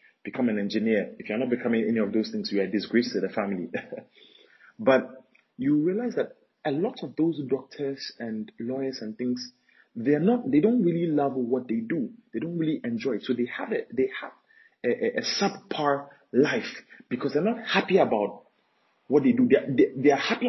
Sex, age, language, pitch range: male, 30-49, English, 115-165 Hz